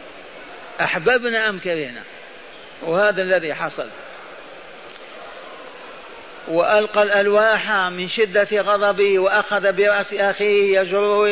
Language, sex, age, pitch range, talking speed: Arabic, male, 50-69, 185-210 Hz, 80 wpm